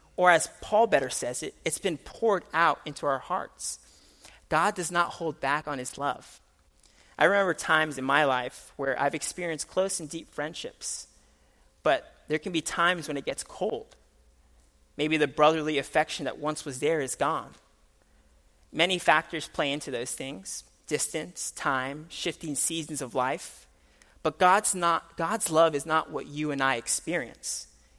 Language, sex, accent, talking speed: English, male, American, 165 wpm